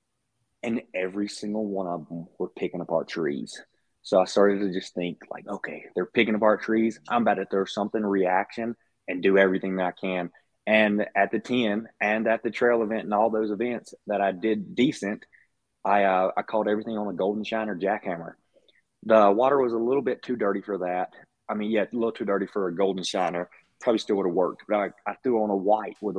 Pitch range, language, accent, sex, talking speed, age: 95-115 Hz, English, American, male, 220 wpm, 20-39